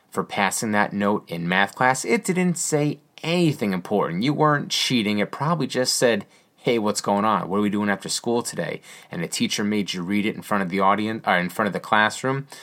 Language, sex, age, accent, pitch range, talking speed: English, male, 30-49, American, 100-135 Hz, 230 wpm